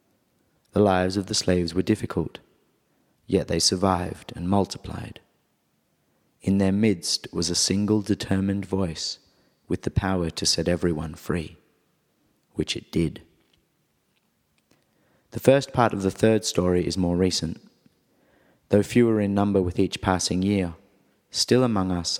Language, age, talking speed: English, 30-49, 140 wpm